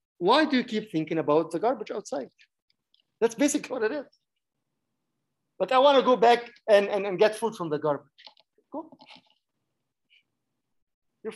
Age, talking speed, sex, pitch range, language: 50-69, 155 wpm, male, 150-230 Hz, English